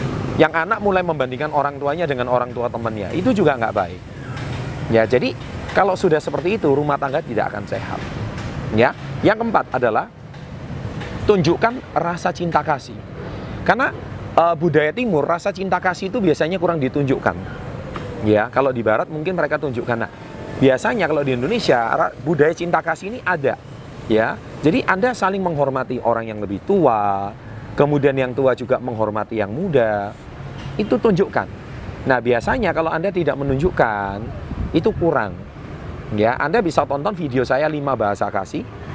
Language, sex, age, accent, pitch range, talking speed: Indonesian, male, 30-49, native, 125-165 Hz, 145 wpm